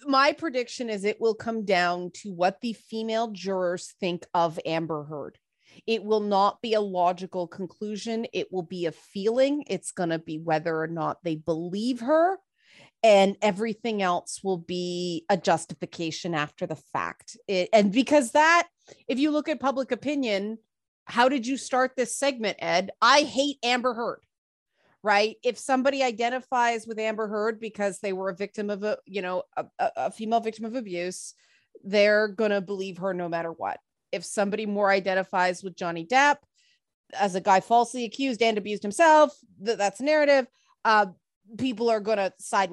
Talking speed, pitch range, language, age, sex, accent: 170 wpm, 180-240 Hz, English, 30-49, female, American